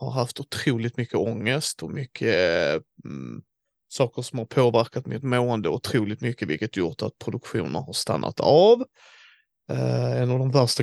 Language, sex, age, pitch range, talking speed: Swedish, male, 30-49, 120-145 Hz, 160 wpm